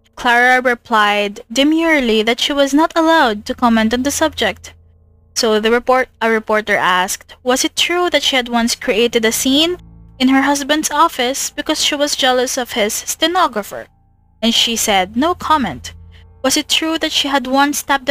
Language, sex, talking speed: English, female, 175 wpm